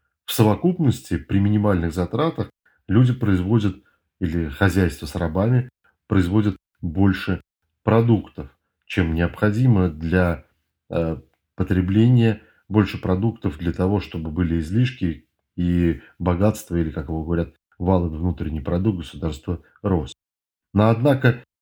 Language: Russian